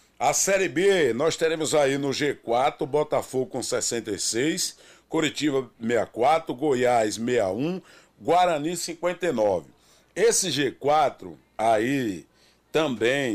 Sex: male